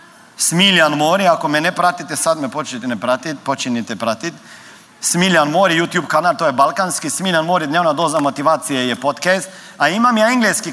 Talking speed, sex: 170 wpm, male